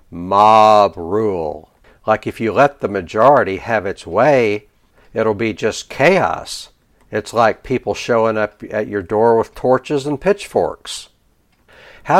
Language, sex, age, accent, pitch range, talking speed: English, male, 60-79, American, 105-140 Hz, 140 wpm